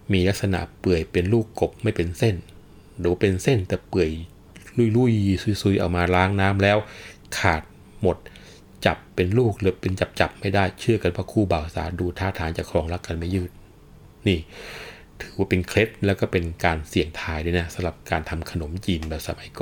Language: Thai